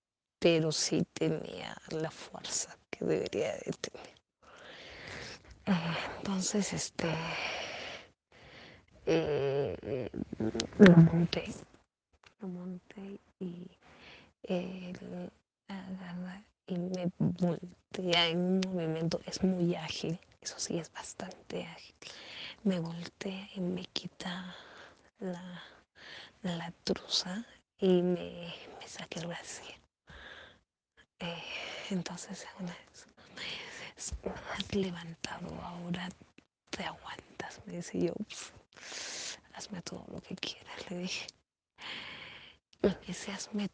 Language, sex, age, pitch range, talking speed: Spanish, female, 20-39, 175-200 Hz, 95 wpm